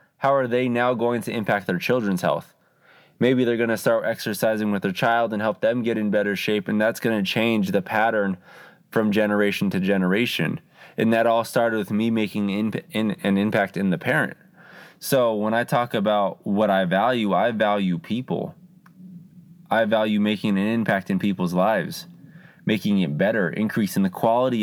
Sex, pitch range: male, 100-125 Hz